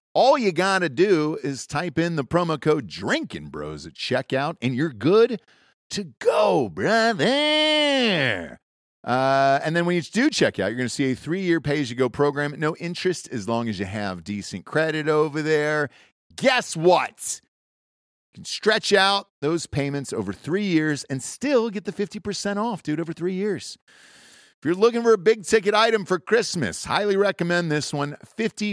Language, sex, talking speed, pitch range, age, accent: English, male, 170 wpm, 135-200 Hz, 40-59, American